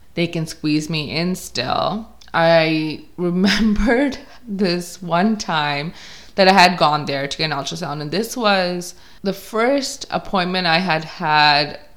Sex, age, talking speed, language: female, 20-39, 145 wpm, English